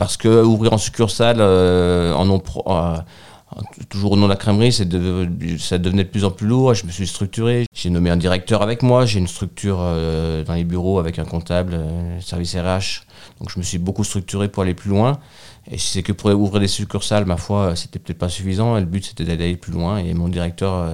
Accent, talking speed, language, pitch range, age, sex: French, 230 wpm, French, 85-105 Hz, 40-59, male